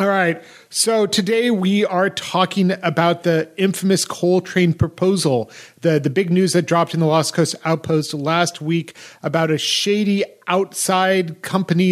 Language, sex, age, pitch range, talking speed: English, male, 30-49, 160-200 Hz, 155 wpm